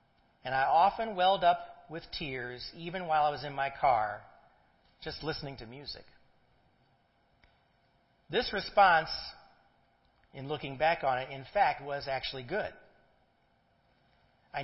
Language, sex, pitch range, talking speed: English, male, 130-165 Hz, 125 wpm